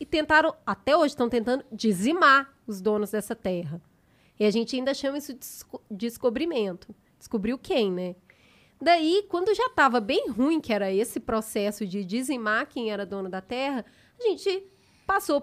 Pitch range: 225-315 Hz